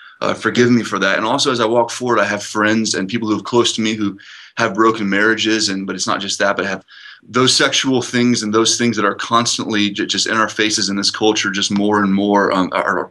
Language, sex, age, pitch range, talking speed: English, male, 20-39, 95-110 Hz, 265 wpm